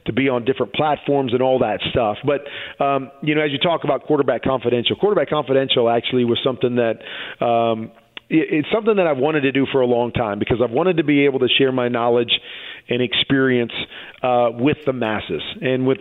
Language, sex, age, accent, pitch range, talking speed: English, male, 40-59, American, 120-140 Hz, 205 wpm